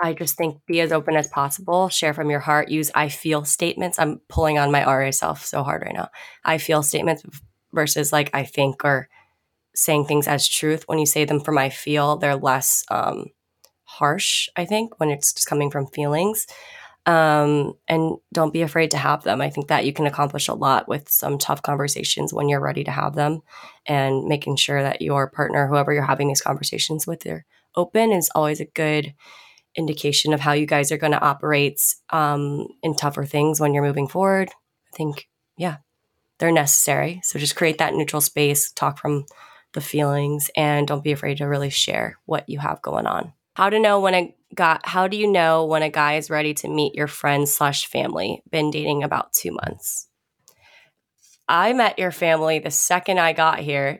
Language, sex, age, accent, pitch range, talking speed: English, female, 20-39, American, 145-160 Hz, 195 wpm